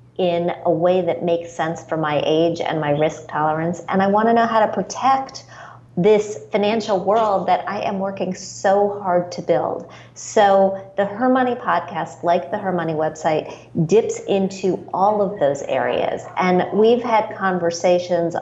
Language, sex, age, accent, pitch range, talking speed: English, female, 40-59, American, 160-195 Hz, 170 wpm